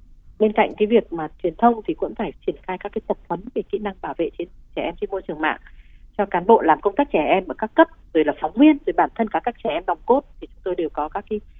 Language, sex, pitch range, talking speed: Vietnamese, female, 175-225 Hz, 305 wpm